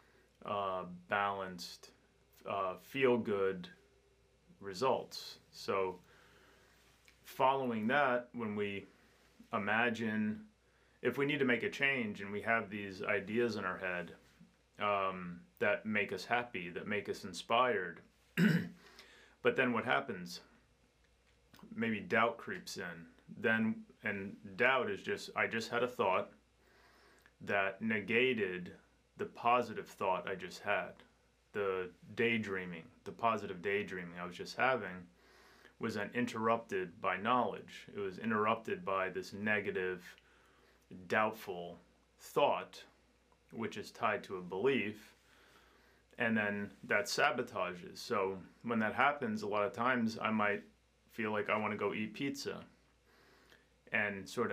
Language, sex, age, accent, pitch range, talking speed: English, male, 30-49, American, 95-115 Hz, 125 wpm